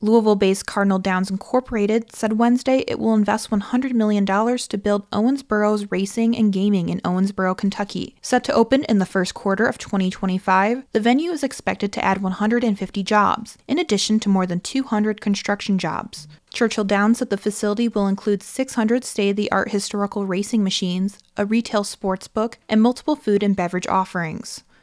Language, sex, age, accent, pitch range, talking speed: English, female, 20-39, American, 195-225 Hz, 160 wpm